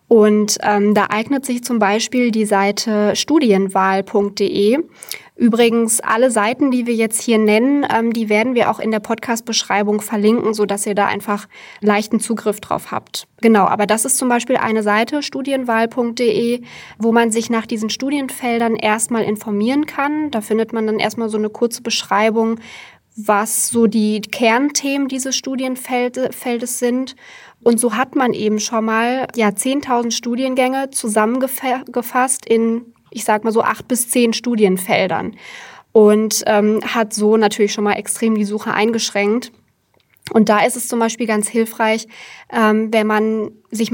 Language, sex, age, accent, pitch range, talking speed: German, female, 20-39, German, 210-240 Hz, 150 wpm